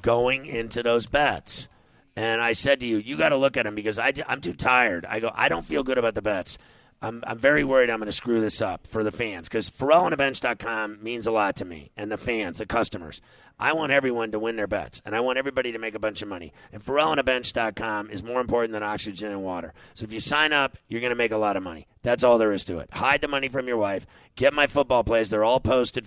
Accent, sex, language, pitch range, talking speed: American, male, English, 110-130 Hz, 270 wpm